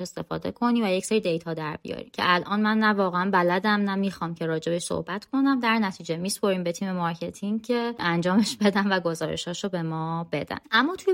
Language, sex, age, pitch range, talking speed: Persian, female, 20-39, 165-215 Hz, 190 wpm